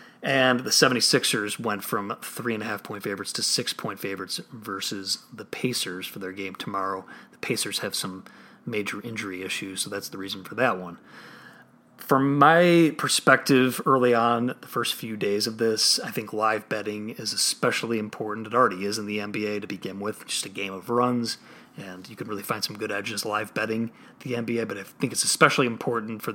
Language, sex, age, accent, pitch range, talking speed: English, male, 30-49, American, 105-130 Hz, 185 wpm